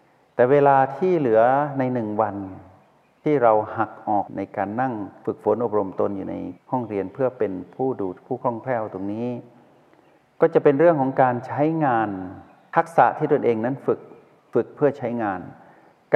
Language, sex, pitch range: Thai, male, 105-135 Hz